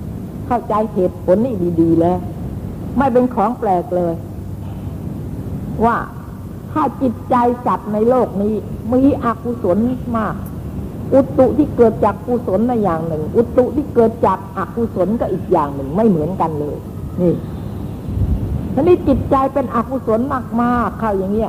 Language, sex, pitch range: Thai, female, 170-240 Hz